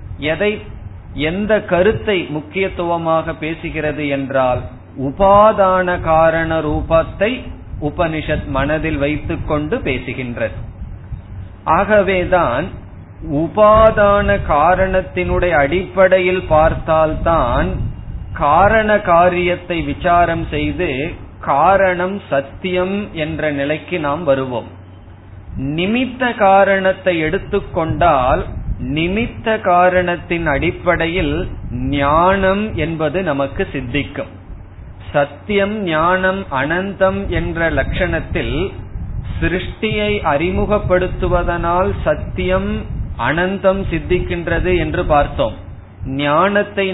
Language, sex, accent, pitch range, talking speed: Tamil, male, native, 130-185 Hz, 65 wpm